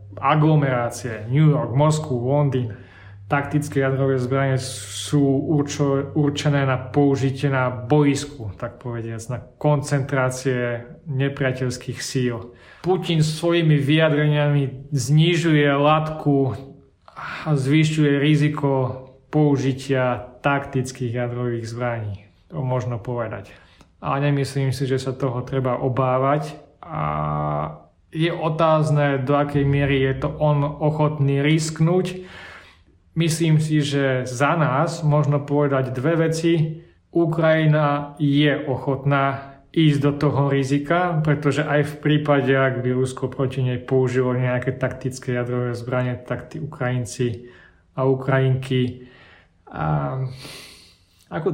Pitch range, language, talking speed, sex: 125-150 Hz, Slovak, 105 wpm, male